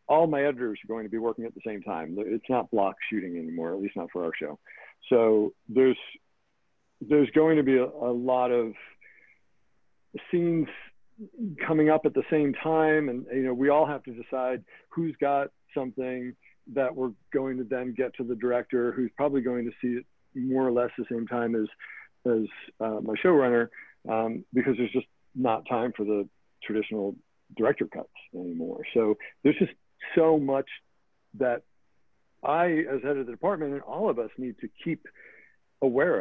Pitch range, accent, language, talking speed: 115-140 Hz, American, English, 180 wpm